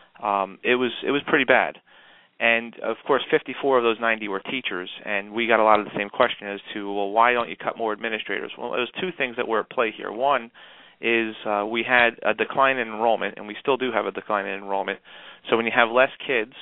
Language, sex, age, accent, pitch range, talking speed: English, male, 30-49, American, 105-125 Hz, 240 wpm